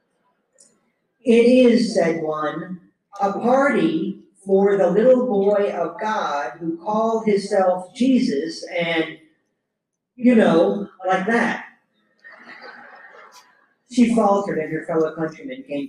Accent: American